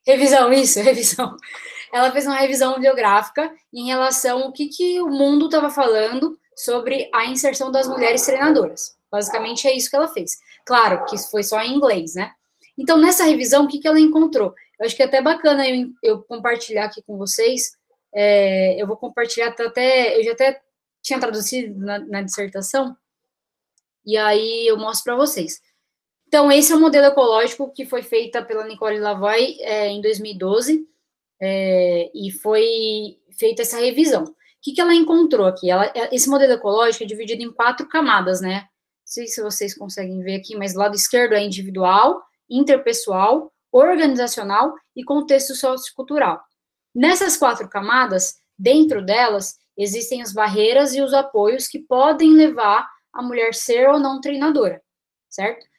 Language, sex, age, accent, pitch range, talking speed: Portuguese, female, 10-29, Brazilian, 215-280 Hz, 165 wpm